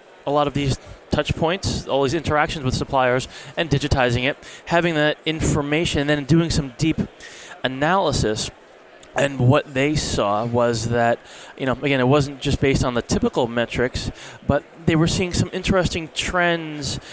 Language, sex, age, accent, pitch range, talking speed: English, male, 20-39, American, 130-150 Hz, 165 wpm